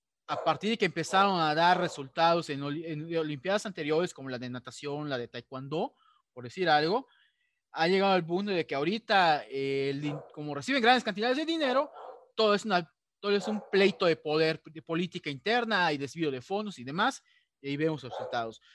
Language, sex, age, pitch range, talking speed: Spanish, male, 30-49, 145-205 Hz, 190 wpm